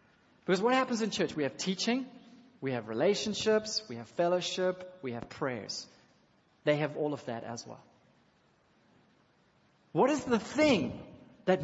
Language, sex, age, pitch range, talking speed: English, male, 40-59, 130-185 Hz, 150 wpm